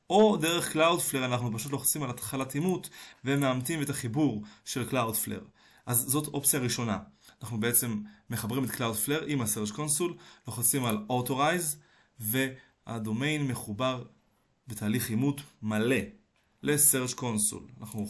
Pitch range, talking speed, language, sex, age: 110-145 Hz, 125 wpm, Hebrew, male, 20-39